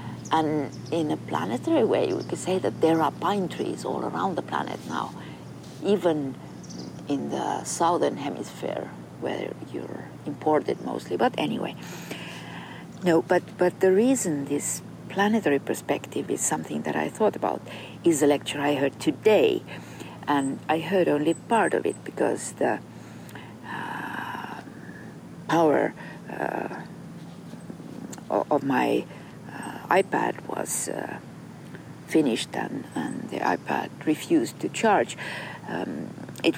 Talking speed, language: 125 wpm, English